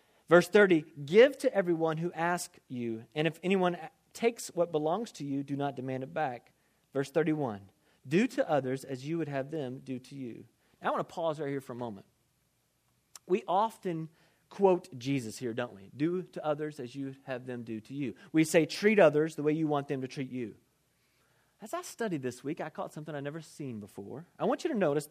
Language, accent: English, American